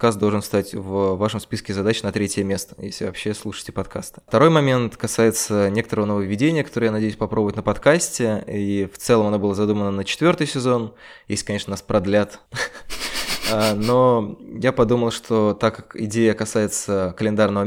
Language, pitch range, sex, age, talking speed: Russian, 100-115 Hz, male, 20-39, 155 wpm